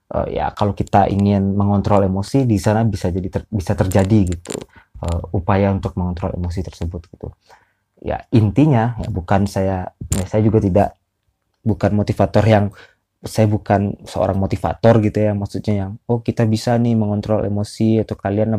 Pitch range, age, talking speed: 95-110 Hz, 20-39, 160 wpm